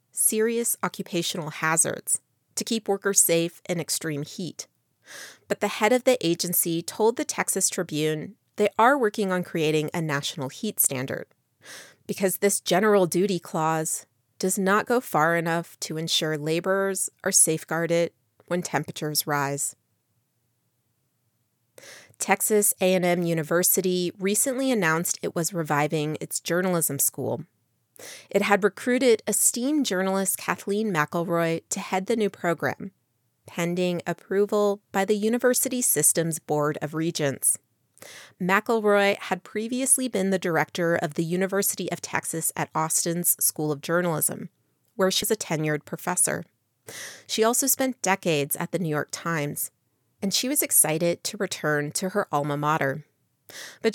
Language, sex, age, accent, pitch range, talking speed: English, female, 30-49, American, 155-205 Hz, 135 wpm